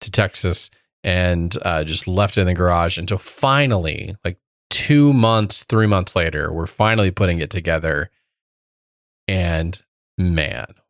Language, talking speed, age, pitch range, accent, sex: English, 140 wpm, 30-49, 90-110 Hz, American, male